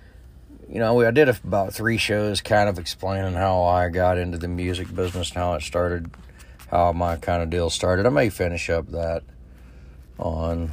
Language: English